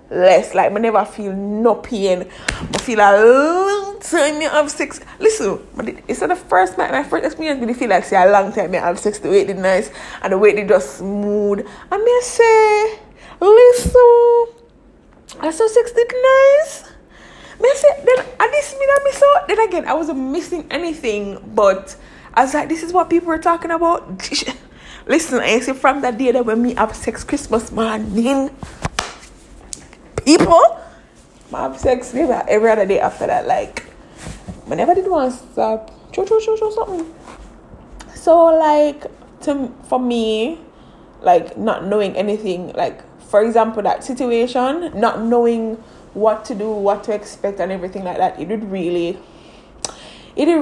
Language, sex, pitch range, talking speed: English, female, 210-325 Hz, 165 wpm